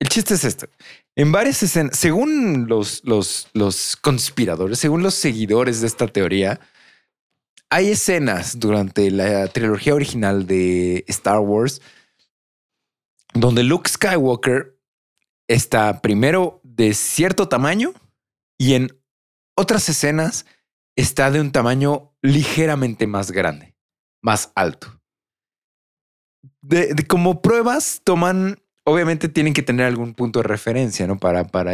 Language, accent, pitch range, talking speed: Spanish, Mexican, 100-145 Hz, 120 wpm